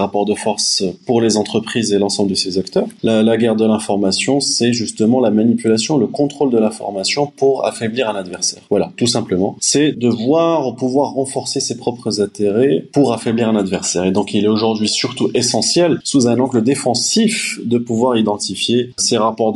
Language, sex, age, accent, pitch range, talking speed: French, male, 20-39, French, 105-130 Hz, 180 wpm